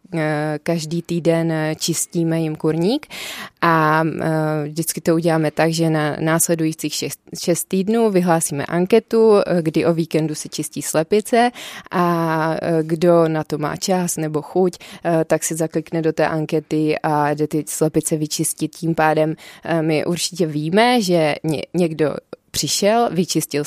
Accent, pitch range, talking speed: native, 155-175 Hz, 130 wpm